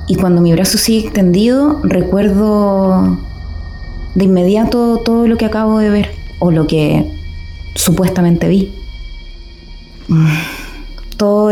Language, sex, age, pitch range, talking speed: Spanish, female, 20-39, 165-215 Hz, 110 wpm